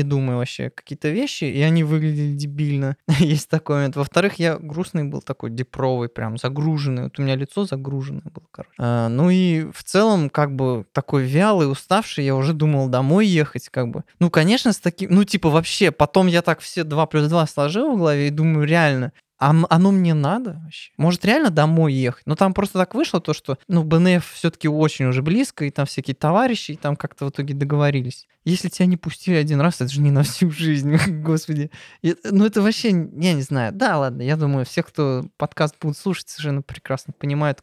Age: 20-39